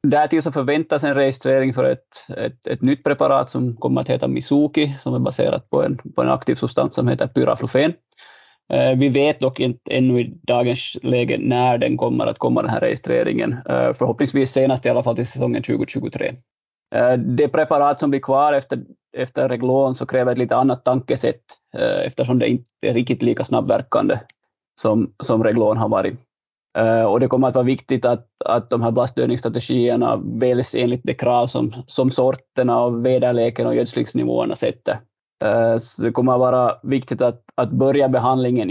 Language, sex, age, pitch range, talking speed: Finnish, male, 20-39, 120-135 Hz, 180 wpm